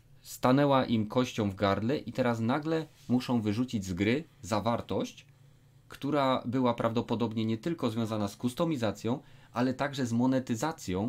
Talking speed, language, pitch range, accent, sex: 135 wpm, Polish, 115-140 Hz, native, male